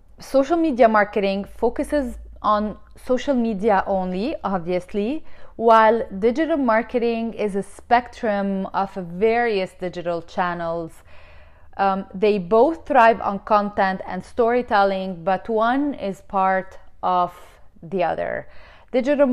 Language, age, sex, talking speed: English, 30-49, female, 110 wpm